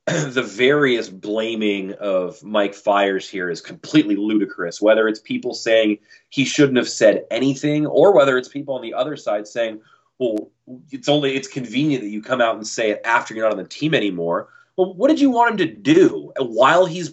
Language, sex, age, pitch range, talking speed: English, male, 30-49, 110-155 Hz, 200 wpm